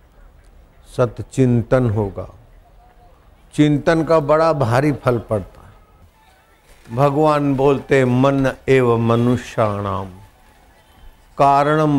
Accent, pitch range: native, 100-140 Hz